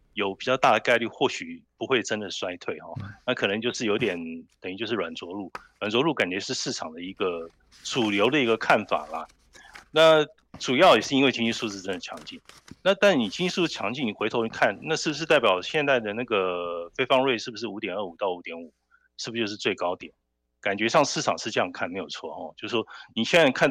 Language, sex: Chinese, male